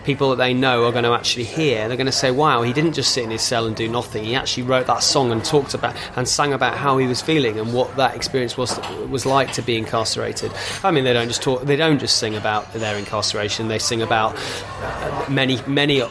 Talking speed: 250 wpm